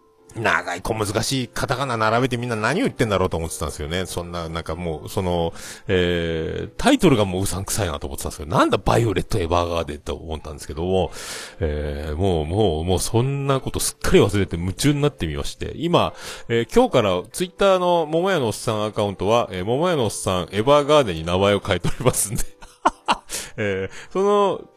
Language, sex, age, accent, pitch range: Japanese, male, 40-59, native, 85-125 Hz